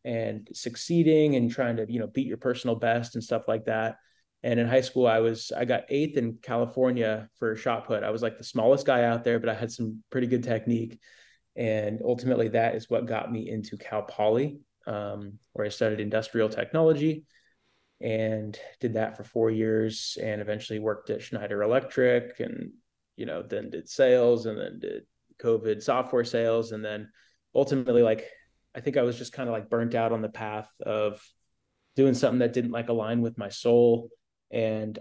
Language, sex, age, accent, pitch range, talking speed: English, male, 20-39, American, 110-120 Hz, 190 wpm